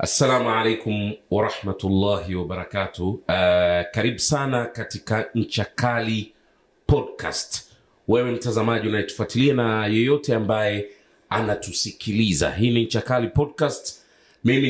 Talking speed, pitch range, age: 90 wpm, 95-125 Hz, 40-59